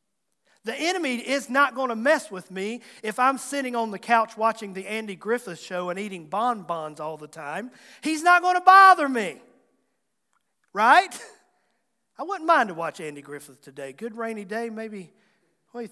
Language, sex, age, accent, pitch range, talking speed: English, male, 40-59, American, 195-260 Hz, 180 wpm